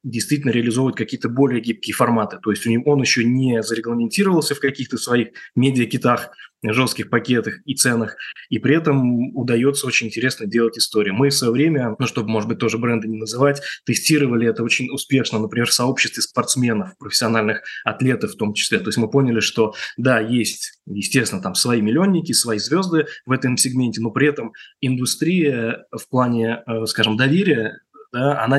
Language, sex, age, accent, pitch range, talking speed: Russian, male, 20-39, native, 110-135 Hz, 170 wpm